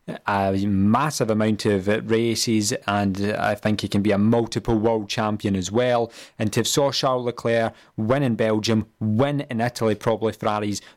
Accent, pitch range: British, 105-125 Hz